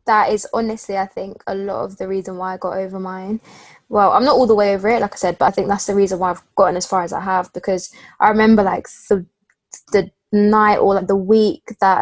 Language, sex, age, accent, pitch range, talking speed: English, female, 20-39, British, 190-220 Hz, 260 wpm